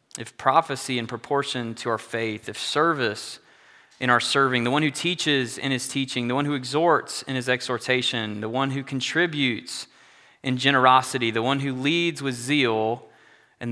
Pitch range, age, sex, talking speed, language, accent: 110-130 Hz, 20-39, male, 170 wpm, English, American